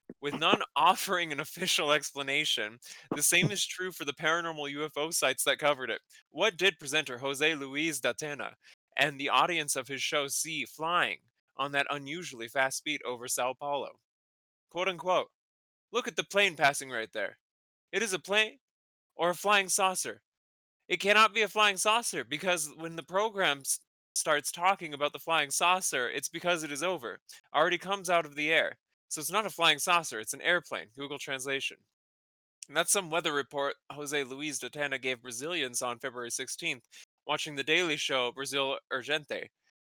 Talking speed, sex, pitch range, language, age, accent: 175 wpm, male, 135-175 Hz, English, 20-39, American